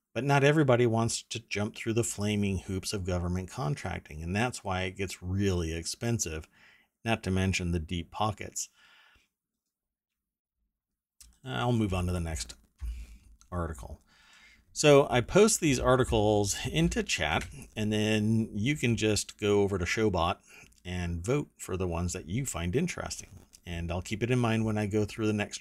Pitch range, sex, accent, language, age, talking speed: 90-115 Hz, male, American, English, 40-59, 165 wpm